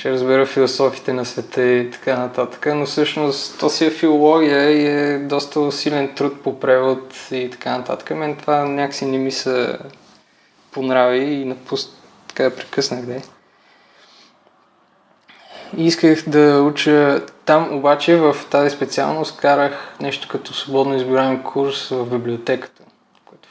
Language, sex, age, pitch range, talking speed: Bulgarian, male, 20-39, 130-145 Hz, 140 wpm